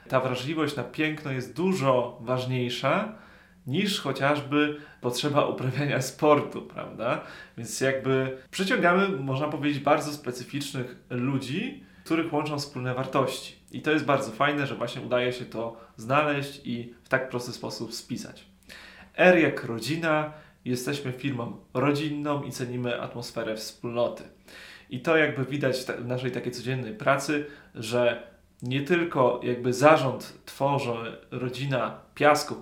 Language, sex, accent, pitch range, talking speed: Polish, male, native, 125-150 Hz, 125 wpm